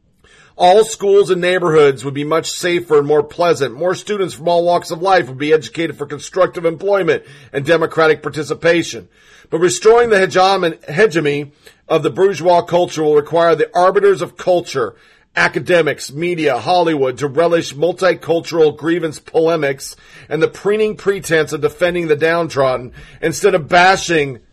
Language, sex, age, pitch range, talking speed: English, male, 40-59, 145-195 Hz, 145 wpm